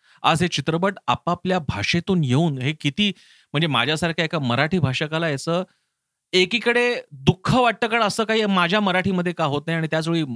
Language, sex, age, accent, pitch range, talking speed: Marathi, male, 40-59, native, 135-190 Hz, 95 wpm